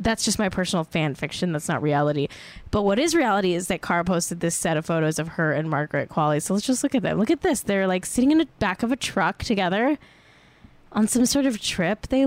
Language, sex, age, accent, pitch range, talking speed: English, female, 10-29, American, 170-220 Hz, 250 wpm